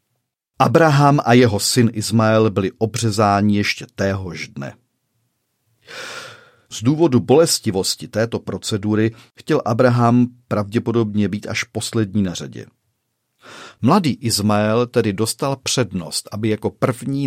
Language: Czech